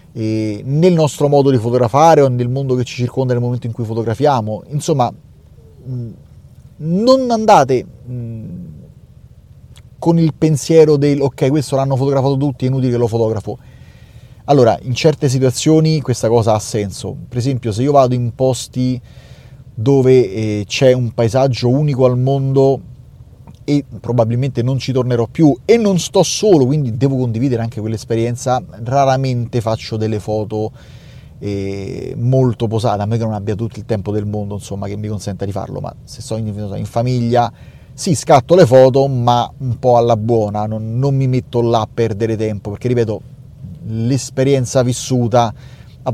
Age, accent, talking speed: 30-49, native, 160 wpm